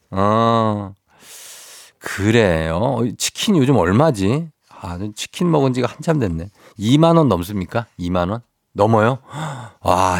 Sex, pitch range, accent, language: male, 100-135 Hz, native, Korean